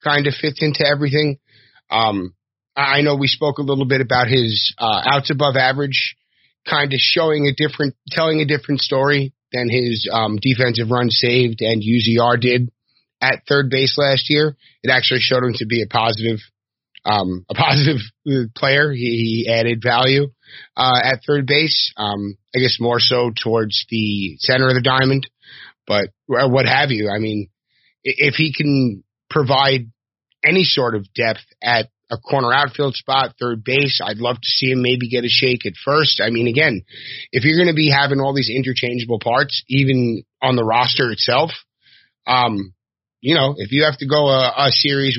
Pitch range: 115-140 Hz